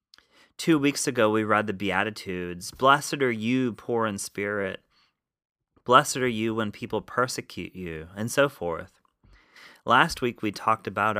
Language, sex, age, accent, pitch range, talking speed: English, male, 30-49, American, 95-125 Hz, 150 wpm